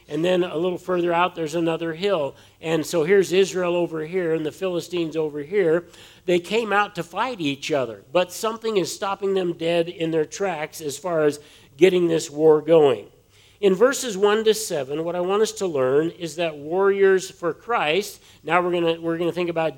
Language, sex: English, male